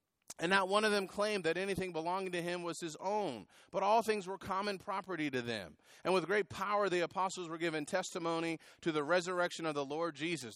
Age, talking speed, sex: 30-49, 215 wpm, male